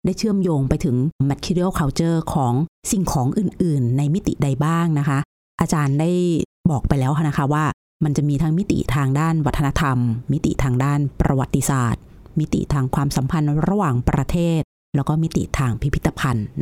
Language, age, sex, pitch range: Thai, 30-49, female, 135-175 Hz